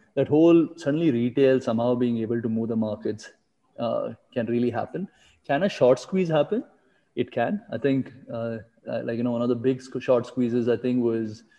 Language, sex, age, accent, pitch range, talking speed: English, male, 20-39, Indian, 115-135 Hz, 190 wpm